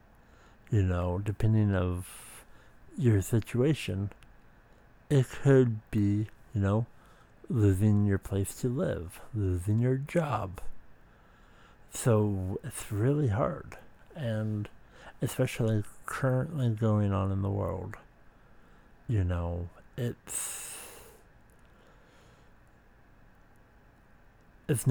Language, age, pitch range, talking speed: English, 60-79, 100-125 Hz, 85 wpm